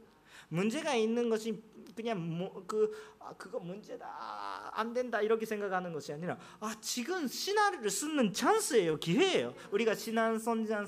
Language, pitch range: Korean, 165-250 Hz